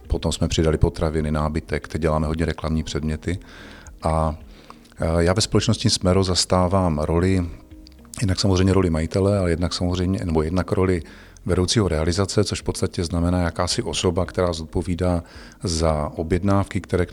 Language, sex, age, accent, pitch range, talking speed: Czech, male, 40-59, native, 85-95 Hz, 145 wpm